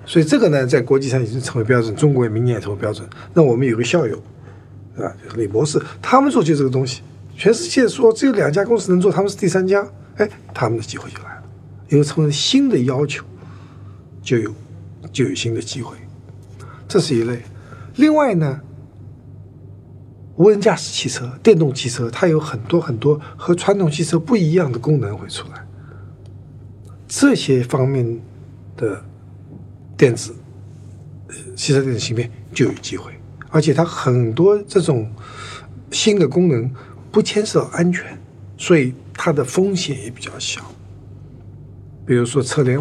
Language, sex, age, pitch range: Chinese, male, 50-69, 105-145 Hz